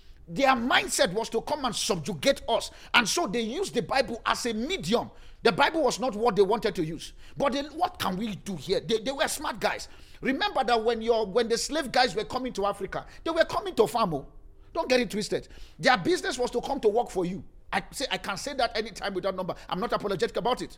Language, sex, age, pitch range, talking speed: English, male, 50-69, 200-275 Hz, 240 wpm